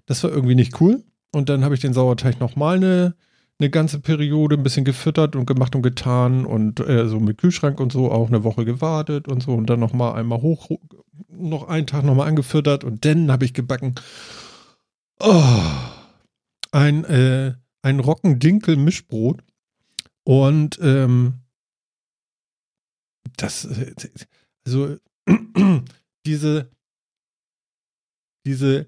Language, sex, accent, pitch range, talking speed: German, male, German, 130-175 Hz, 130 wpm